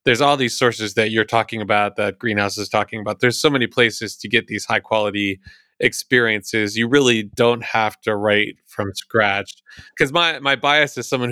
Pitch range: 105-130 Hz